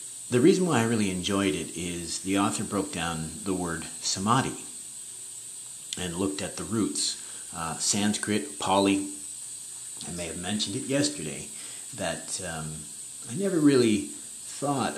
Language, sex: English, male